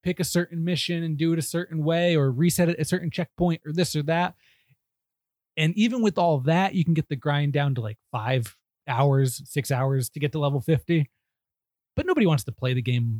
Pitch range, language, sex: 130-180 Hz, English, male